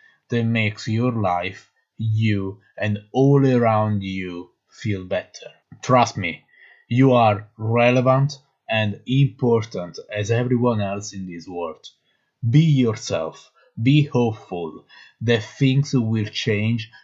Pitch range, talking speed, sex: 105-130 Hz, 115 wpm, male